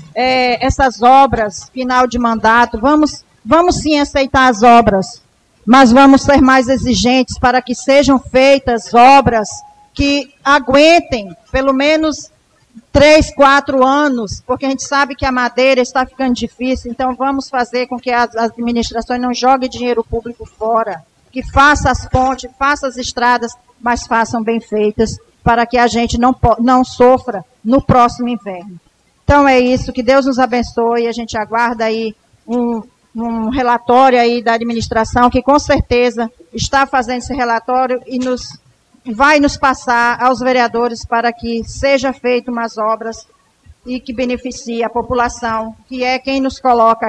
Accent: Brazilian